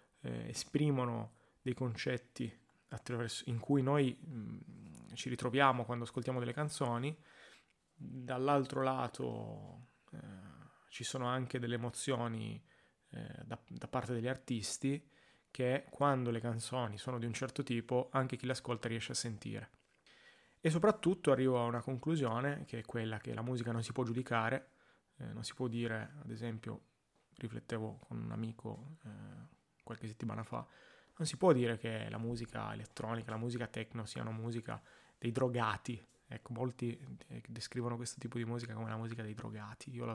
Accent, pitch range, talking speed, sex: native, 115-130 Hz, 155 wpm, male